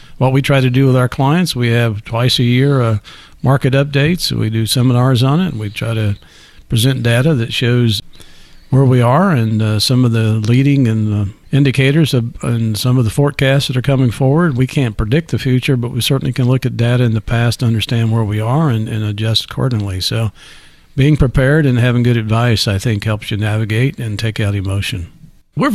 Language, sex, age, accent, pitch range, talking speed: English, male, 50-69, American, 115-155 Hz, 215 wpm